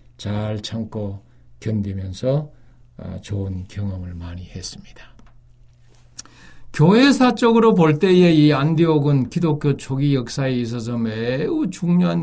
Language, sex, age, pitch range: Korean, male, 60-79, 120-155 Hz